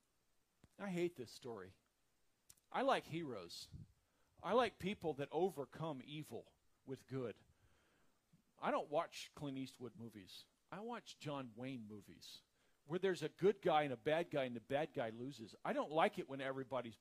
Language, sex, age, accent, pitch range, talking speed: English, male, 50-69, American, 140-220 Hz, 160 wpm